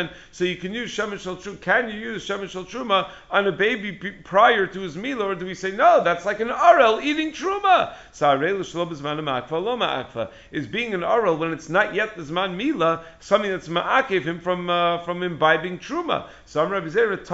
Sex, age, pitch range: male, 50-69, 155-195 Hz